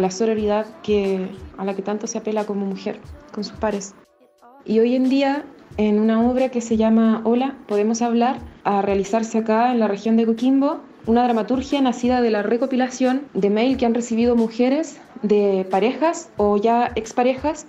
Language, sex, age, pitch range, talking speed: Spanish, female, 20-39, 200-240 Hz, 175 wpm